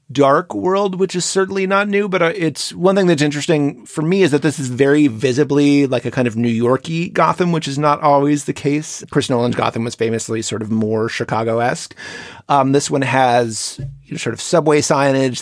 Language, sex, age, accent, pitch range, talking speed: English, male, 30-49, American, 120-150 Hz, 195 wpm